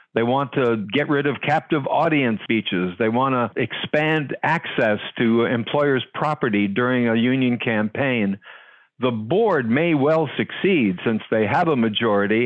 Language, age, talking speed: English, 60-79, 150 wpm